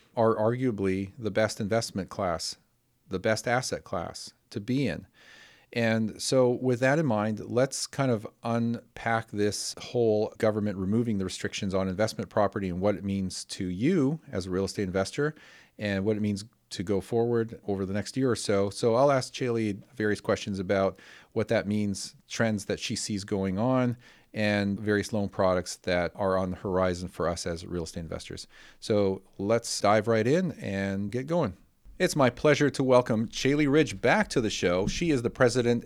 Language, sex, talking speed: English, male, 185 wpm